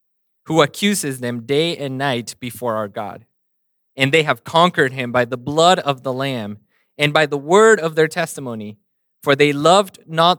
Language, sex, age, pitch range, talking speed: English, male, 20-39, 125-160 Hz, 180 wpm